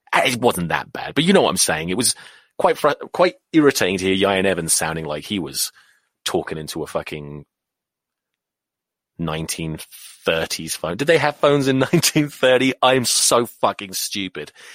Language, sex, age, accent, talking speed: English, male, 30-49, British, 165 wpm